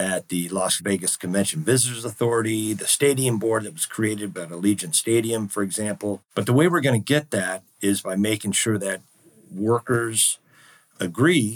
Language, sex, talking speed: English, male, 165 wpm